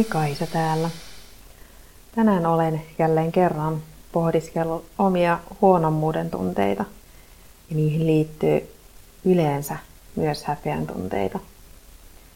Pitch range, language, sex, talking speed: 105-170 Hz, Finnish, female, 85 wpm